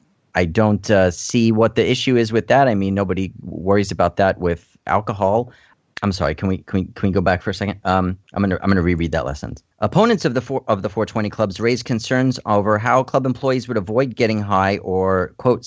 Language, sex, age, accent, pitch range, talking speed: English, male, 40-59, American, 90-120 Hz, 225 wpm